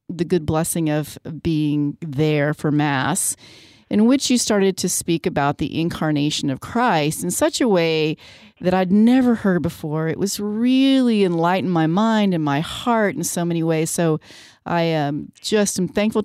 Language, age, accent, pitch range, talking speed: English, 30-49, American, 155-215 Hz, 170 wpm